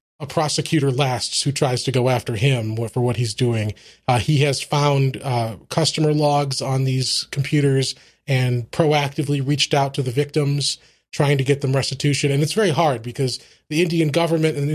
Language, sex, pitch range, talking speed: English, male, 130-150 Hz, 185 wpm